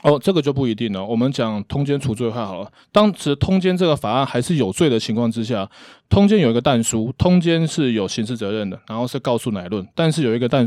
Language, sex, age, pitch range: Chinese, male, 20-39, 115-155 Hz